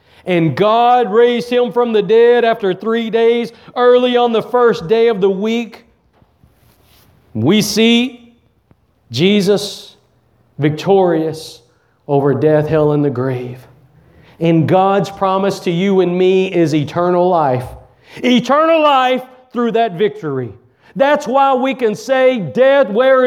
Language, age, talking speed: English, 50-69, 130 wpm